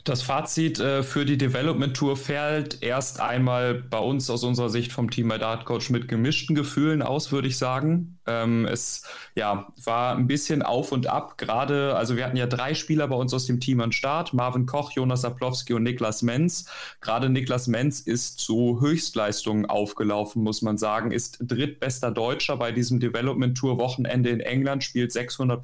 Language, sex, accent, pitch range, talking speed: German, male, German, 120-140 Hz, 170 wpm